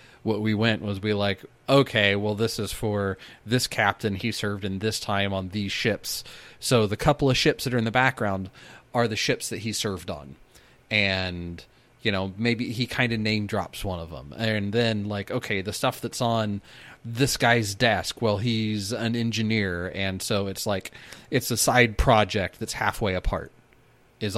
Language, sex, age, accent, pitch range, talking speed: English, male, 30-49, American, 100-120 Hz, 190 wpm